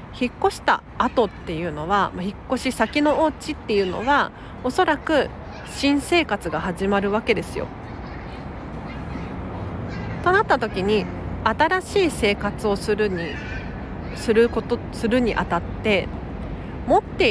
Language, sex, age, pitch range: Japanese, female, 40-59, 175-260 Hz